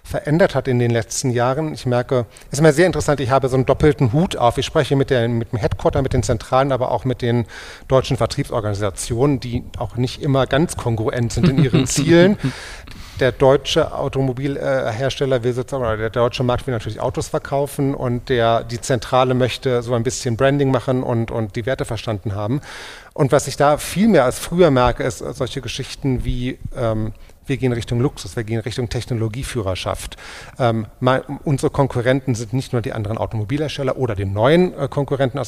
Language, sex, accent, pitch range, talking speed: German, male, German, 115-135 Hz, 190 wpm